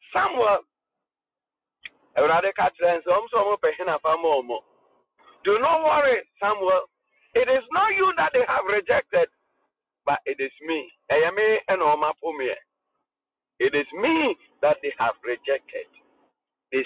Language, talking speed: English, 90 wpm